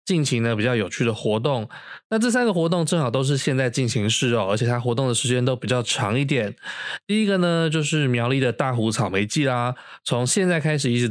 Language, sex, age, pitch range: Chinese, male, 20-39, 115-145 Hz